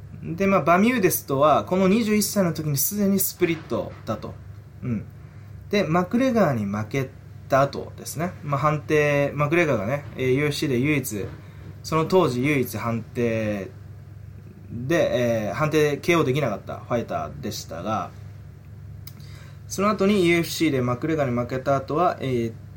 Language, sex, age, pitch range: Japanese, male, 20-39, 110-160 Hz